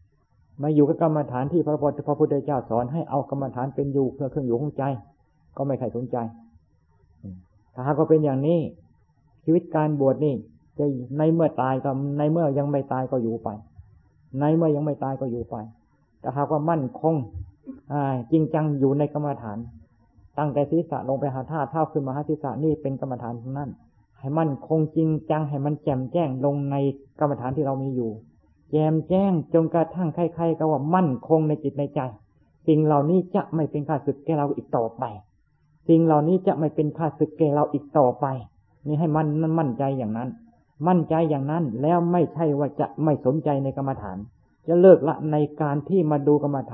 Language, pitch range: Thai, 130-155 Hz